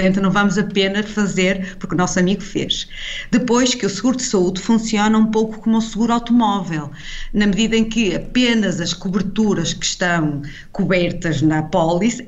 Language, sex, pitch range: English, female, 170-220 Hz